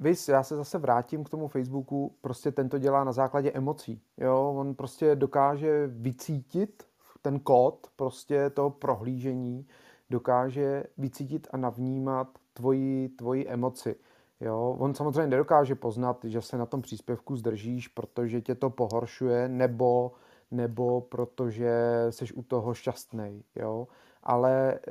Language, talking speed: Czech, 135 wpm